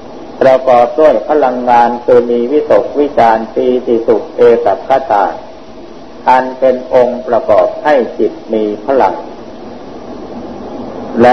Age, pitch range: 50-69, 120-140 Hz